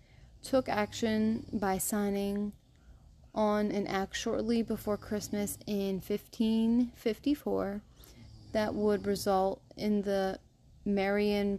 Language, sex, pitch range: English, female, 185-220 Hz